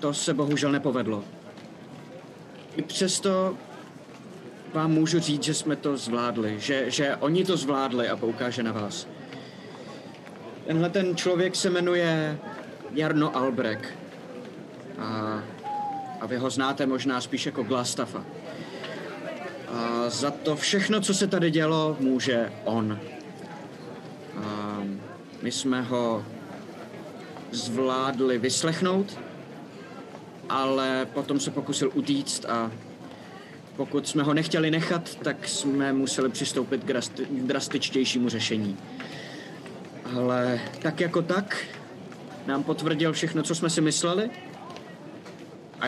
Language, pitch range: Czech, 125-160 Hz